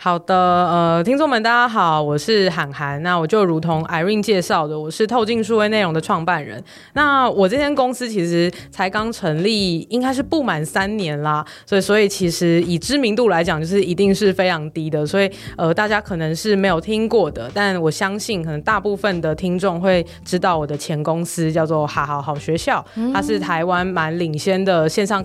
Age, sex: 20-39, female